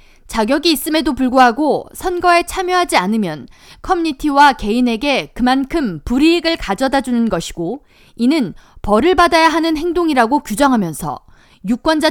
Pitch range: 235-325 Hz